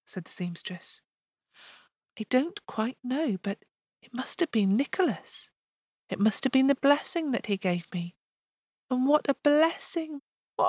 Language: English